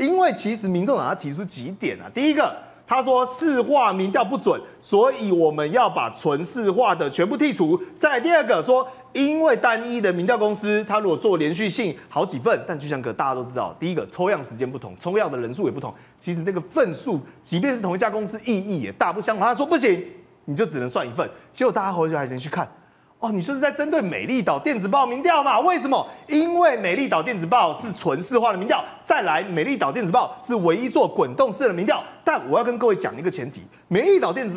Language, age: Chinese, 30-49